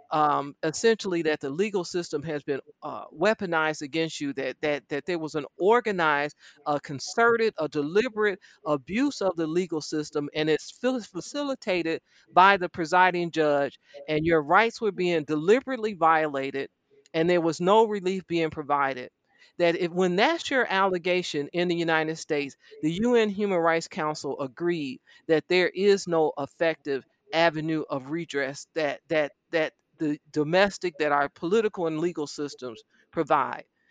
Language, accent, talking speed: English, American, 155 wpm